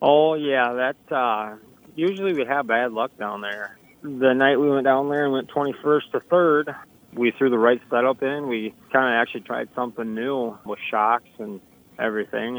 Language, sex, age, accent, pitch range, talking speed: English, male, 20-39, American, 110-130 Hz, 180 wpm